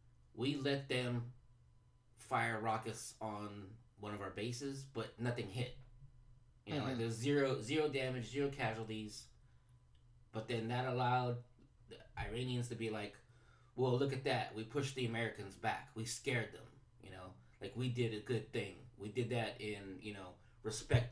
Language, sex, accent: English, male, American